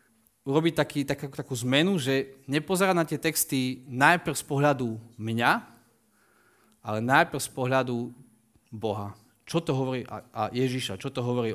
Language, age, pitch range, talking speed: Slovak, 20-39, 120-155 Hz, 150 wpm